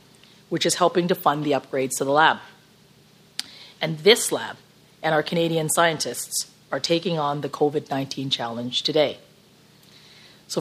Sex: female